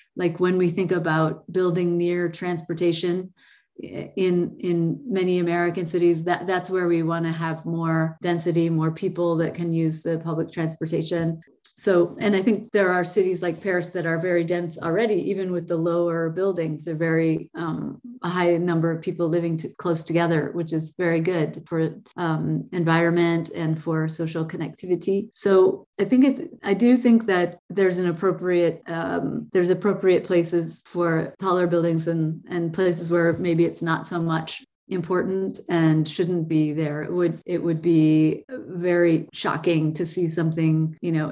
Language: English